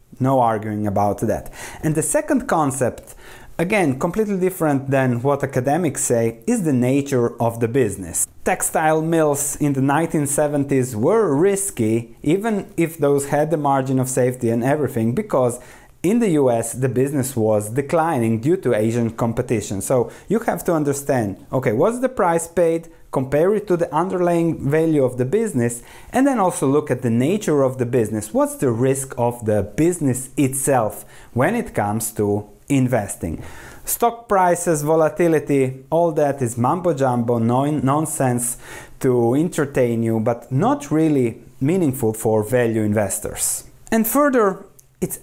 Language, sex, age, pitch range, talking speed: English, male, 30-49, 120-160 Hz, 150 wpm